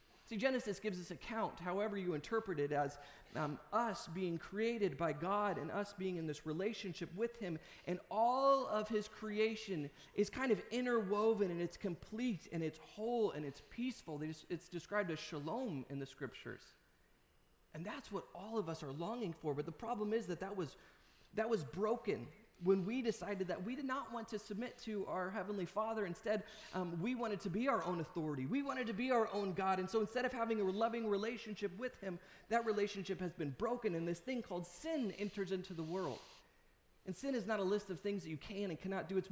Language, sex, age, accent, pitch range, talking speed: English, male, 30-49, American, 165-220 Hz, 210 wpm